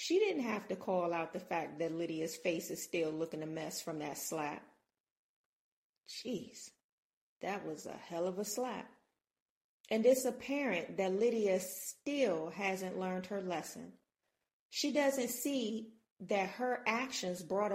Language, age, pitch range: English, 40-59, 180-235 Hz